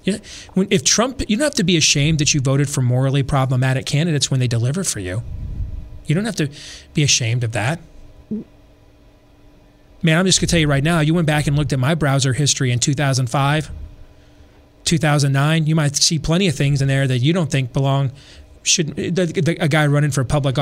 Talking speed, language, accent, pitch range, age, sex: 205 wpm, English, American, 130-160 Hz, 30-49, male